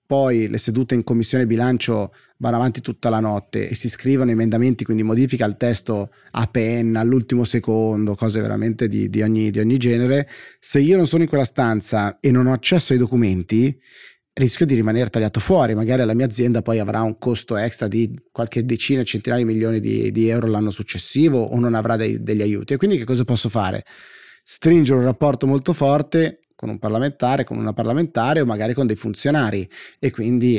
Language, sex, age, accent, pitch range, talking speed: Italian, male, 30-49, native, 110-130 Hz, 195 wpm